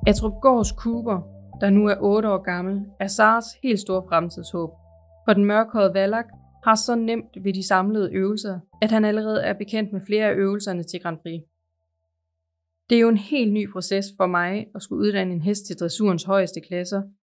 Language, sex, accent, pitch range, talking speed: Danish, female, native, 175-210 Hz, 190 wpm